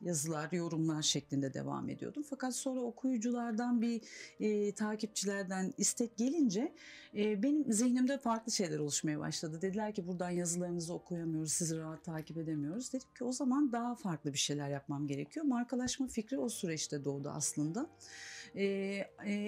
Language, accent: Turkish, native